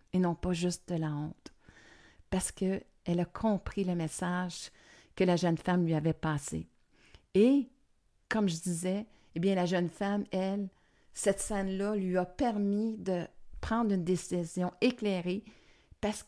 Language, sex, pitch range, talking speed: French, female, 180-225 Hz, 150 wpm